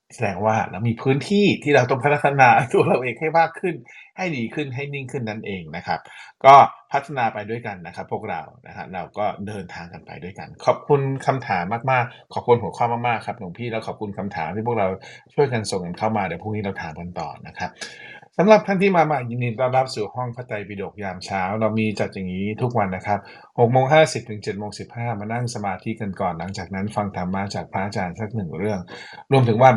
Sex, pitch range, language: male, 100-125 Hz, Thai